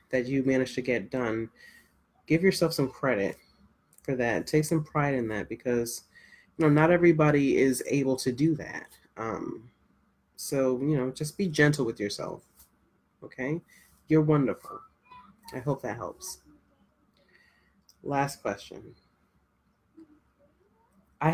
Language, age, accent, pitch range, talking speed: English, 20-39, American, 120-150 Hz, 130 wpm